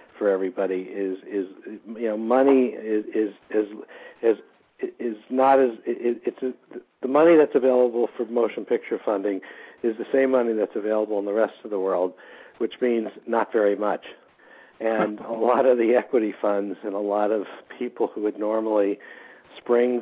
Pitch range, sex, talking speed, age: 100-125 Hz, male, 175 wpm, 60-79